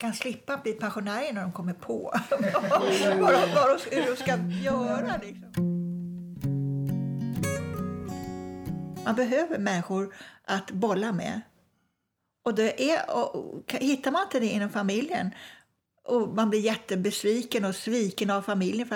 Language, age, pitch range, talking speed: Swedish, 60-79, 195-245 Hz, 130 wpm